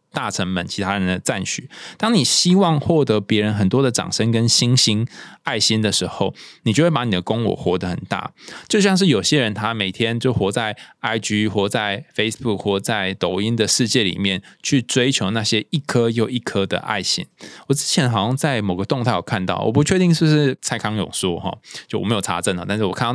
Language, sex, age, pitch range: Chinese, male, 20-39, 100-135 Hz